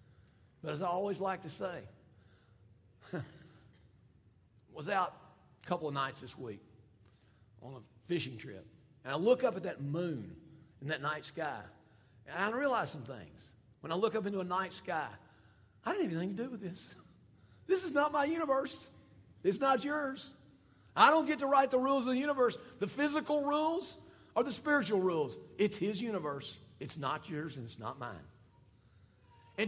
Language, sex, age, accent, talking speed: English, male, 50-69, American, 180 wpm